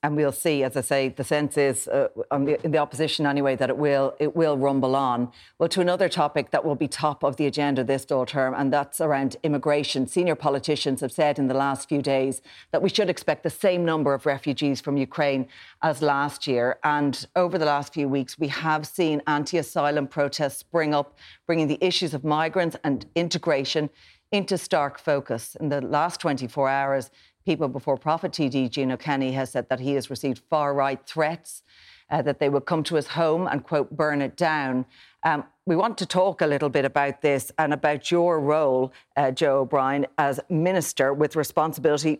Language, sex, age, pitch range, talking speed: English, female, 40-59, 135-160 Hz, 200 wpm